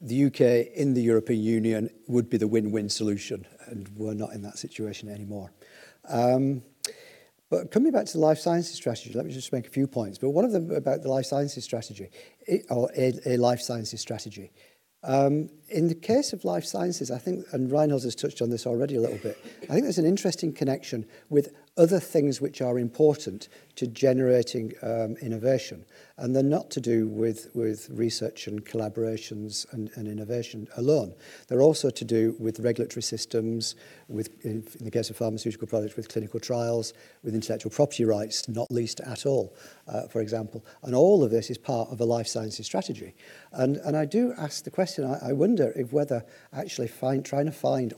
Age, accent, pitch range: 50-69, British, 110-140 Hz